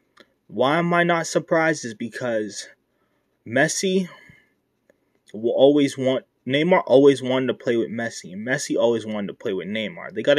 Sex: male